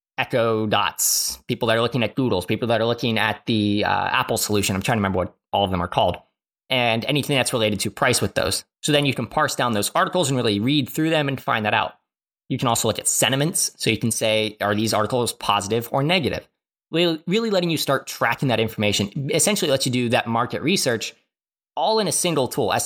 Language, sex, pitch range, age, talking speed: English, male, 110-145 Hz, 20-39, 230 wpm